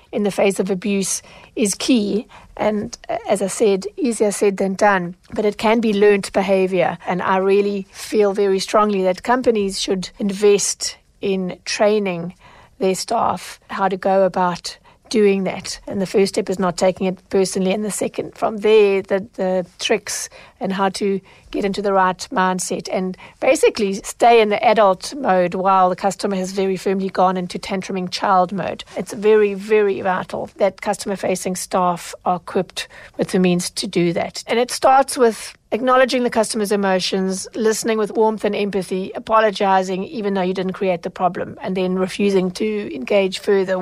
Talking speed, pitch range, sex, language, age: 175 wpm, 185-215 Hz, female, English, 60-79